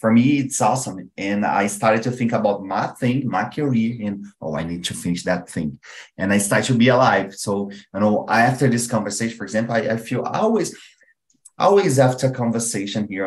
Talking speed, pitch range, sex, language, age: 200 wpm, 85-115 Hz, male, Portuguese, 30-49